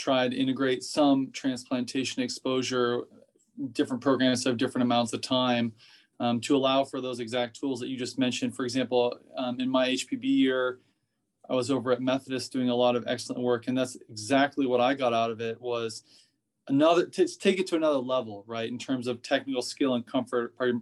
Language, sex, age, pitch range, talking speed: English, male, 20-39, 125-150 Hz, 195 wpm